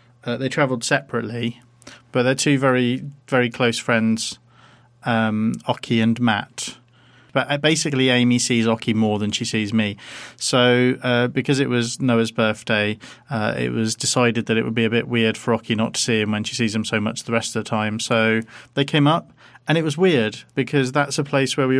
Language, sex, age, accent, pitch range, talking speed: English, male, 40-59, British, 115-130 Hz, 205 wpm